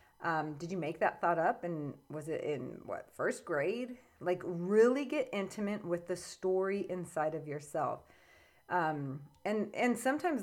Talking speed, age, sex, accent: 160 wpm, 30-49, female, American